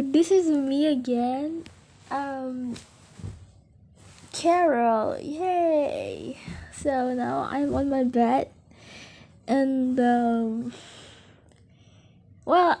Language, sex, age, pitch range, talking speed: Indonesian, female, 10-29, 235-295 Hz, 75 wpm